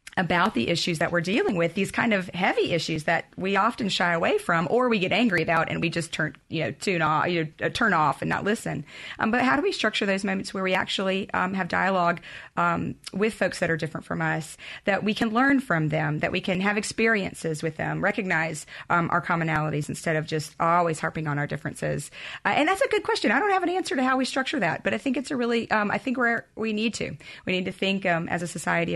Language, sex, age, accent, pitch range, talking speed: English, female, 30-49, American, 165-210 Hz, 250 wpm